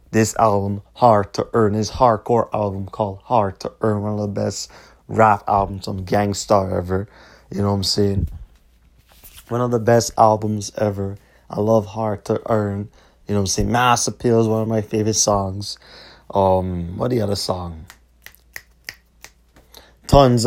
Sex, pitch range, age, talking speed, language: male, 95-115 Hz, 30-49, 165 wpm, English